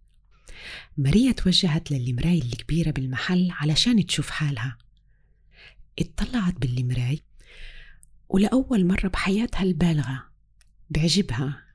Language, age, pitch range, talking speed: Arabic, 30-49, 140-185 Hz, 75 wpm